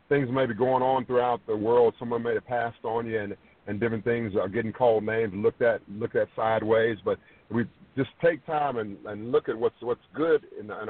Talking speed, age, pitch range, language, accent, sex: 235 wpm, 50-69, 105-130 Hz, English, American, male